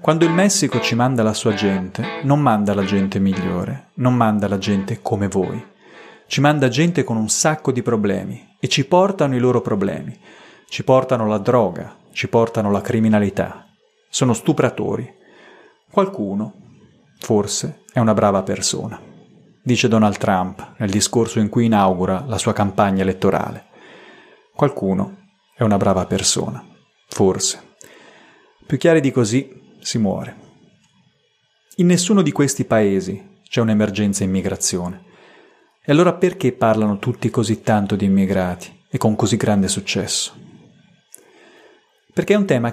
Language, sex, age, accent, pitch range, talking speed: Italian, male, 30-49, native, 100-145 Hz, 140 wpm